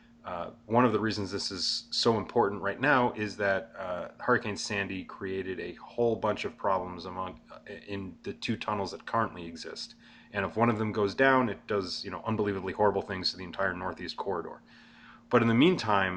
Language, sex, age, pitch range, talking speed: English, male, 30-49, 95-115 Hz, 195 wpm